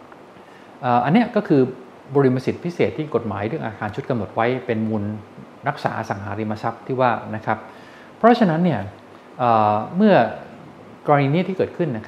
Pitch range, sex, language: 115-170 Hz, male, Thai